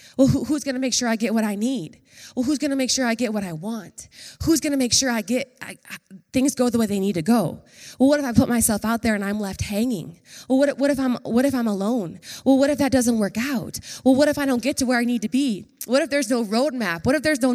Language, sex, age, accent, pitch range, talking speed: English, female, 20-39, American, 215-275 Hz, 300 wpm